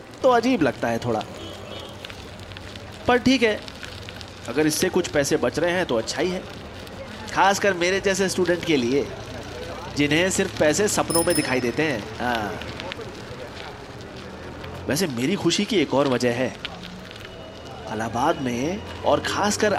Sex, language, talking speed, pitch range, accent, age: male, Hindi, 135 wpm, 105-175 Hz, native, 30-49